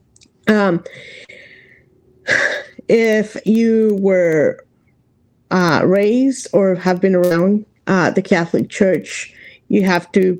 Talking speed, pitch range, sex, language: 100 wpm, 180-245 Hz, female, English